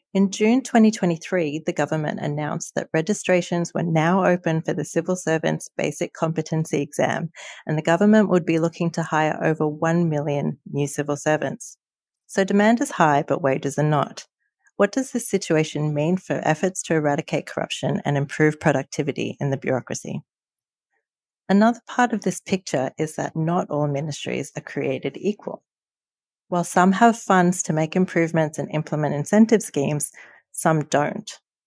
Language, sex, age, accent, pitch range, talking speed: English, female, 40-59, Australian, 150-185 Hz, 155 wpm